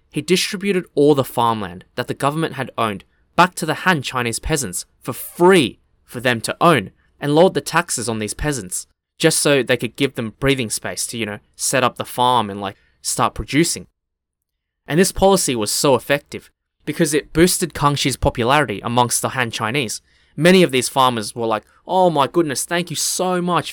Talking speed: 190 wpm